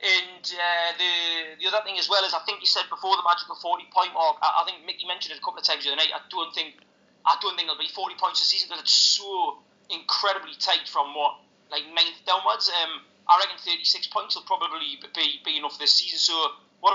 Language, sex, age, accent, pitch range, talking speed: English, male, 20-39, British, 175-275 Hz, 225 wpm